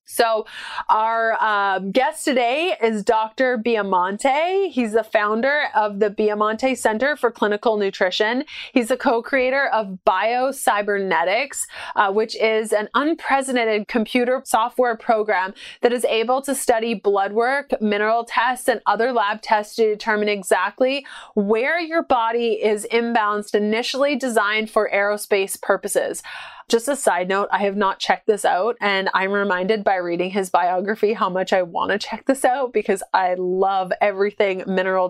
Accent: American